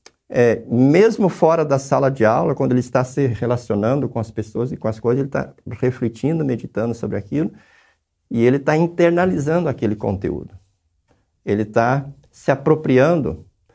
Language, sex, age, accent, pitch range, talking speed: Portuguese, male, 60-79, Brazilian, 105-145 Hz, 155 wpm